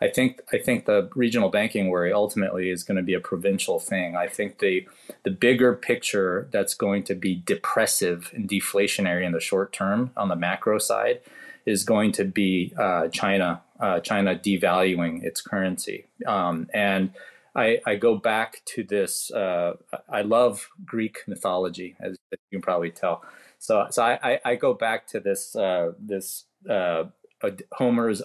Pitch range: 95-125 Hz